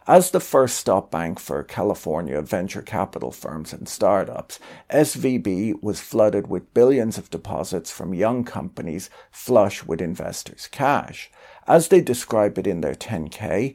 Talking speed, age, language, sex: 145 wpm, 50-69, English, male